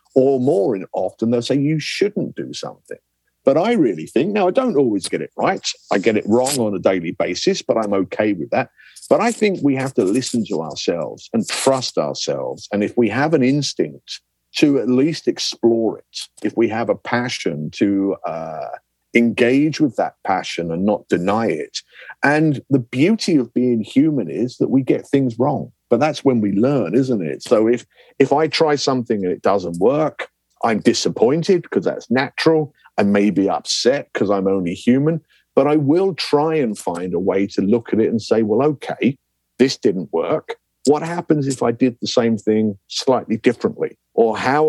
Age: 50-69